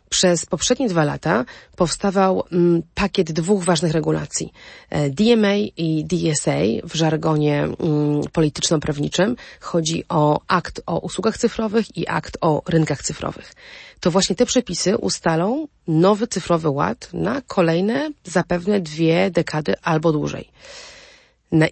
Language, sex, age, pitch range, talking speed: Polish, female, 30-49, 160-195 Hz, 115 wpm